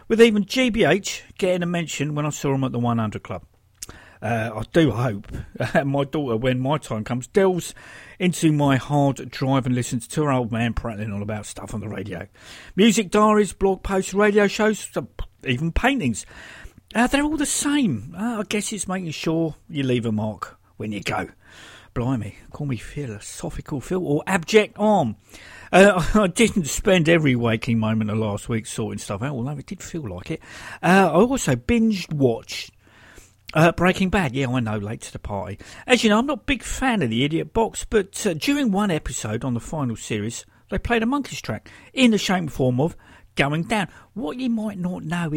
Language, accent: English, British